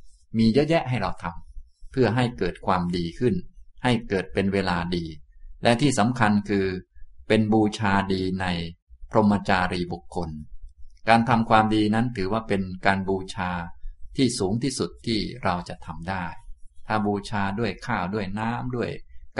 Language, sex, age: Thai, male, 20-39